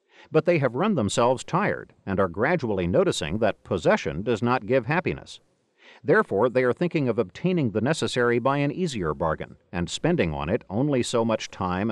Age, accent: 50-69, American